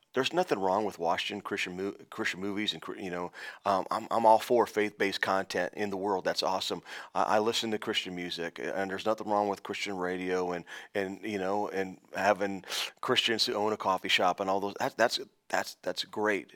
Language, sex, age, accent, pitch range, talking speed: English, male, 30-49, American, 95-110 Hz, 205 wpm